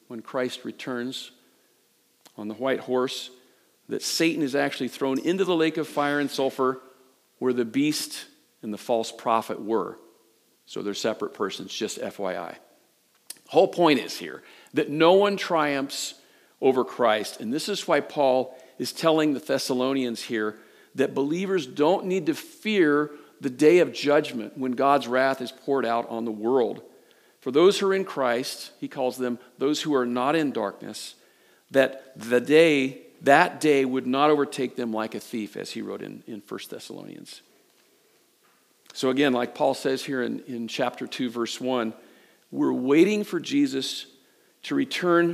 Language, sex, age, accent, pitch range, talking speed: English, male, 50-69, American, 125-160 Hz, 165 wpm